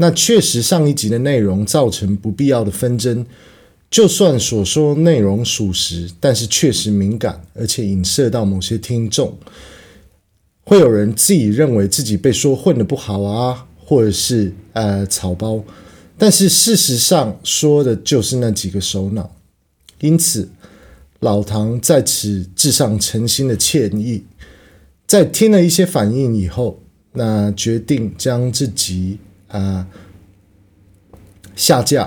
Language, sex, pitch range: Chinese, male, 100-130 Hz